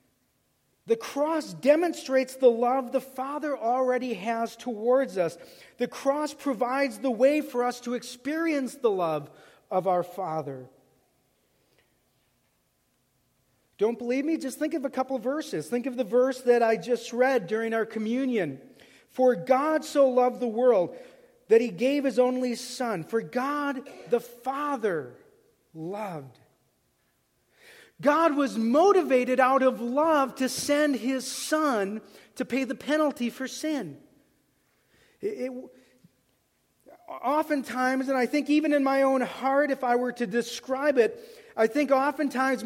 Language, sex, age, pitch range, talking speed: English, male, 40-59, 235-280 Hz, 135 wpm